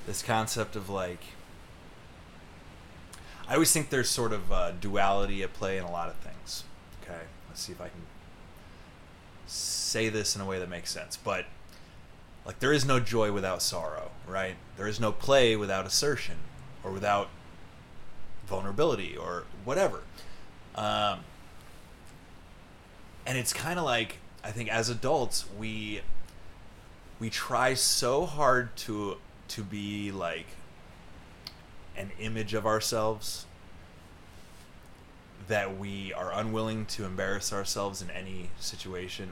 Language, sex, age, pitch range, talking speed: English, male, 20-39, 85-110 Hz, 130 wpm